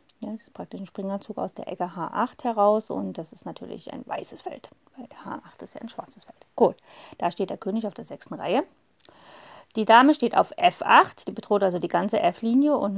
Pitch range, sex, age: 185-240 Hz, female, 30-49